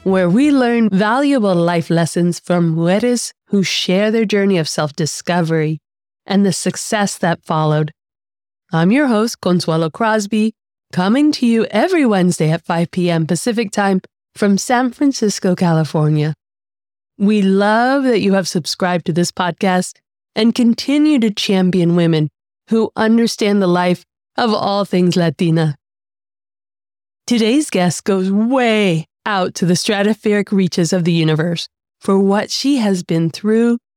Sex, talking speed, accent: female, 140 wpm, American